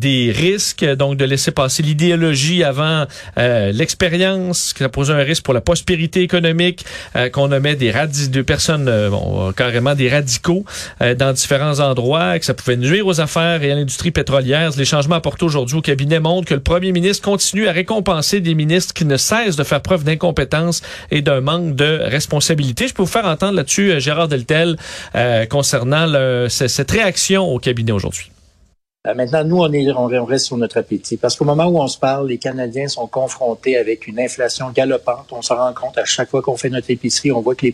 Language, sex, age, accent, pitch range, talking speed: French, male, 40-59, Canadian, 125-165 Hz, 210 wpm